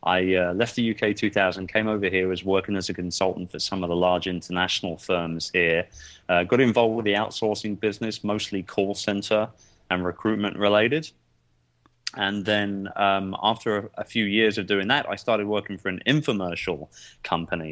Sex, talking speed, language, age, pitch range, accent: male, 180 wpm, English, 30-49, 85-100 Hz, British